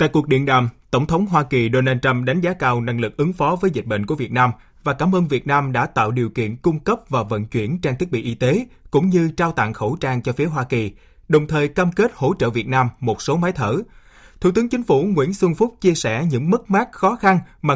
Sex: male